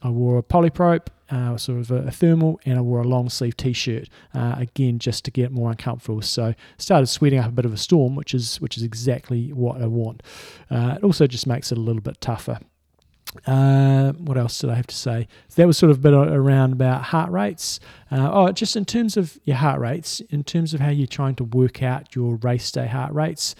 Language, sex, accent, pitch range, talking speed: English, male, Australian, 125-145 Hz, 235 wpm